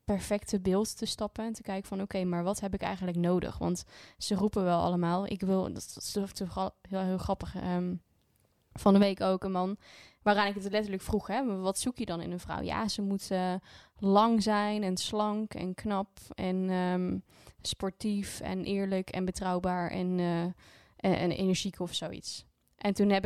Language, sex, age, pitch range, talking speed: Dutch, female, 10-29, 185-210 Hz, 200 wpm